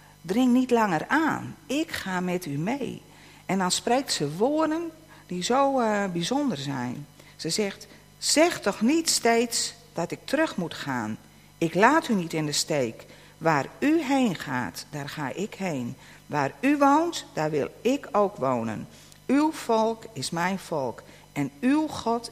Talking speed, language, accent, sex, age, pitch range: 165 wpm, Dutch, Dutch, female, 50-69, 155-245 Hz